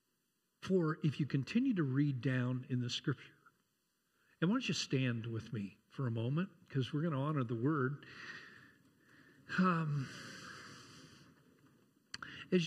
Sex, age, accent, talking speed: male, 50-69, American, 135 wpm